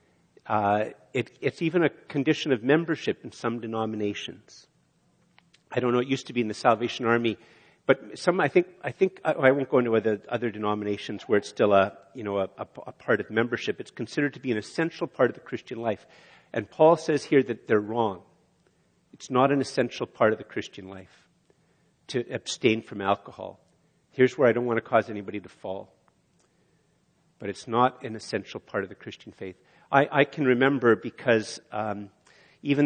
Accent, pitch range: American, 110-140 Hz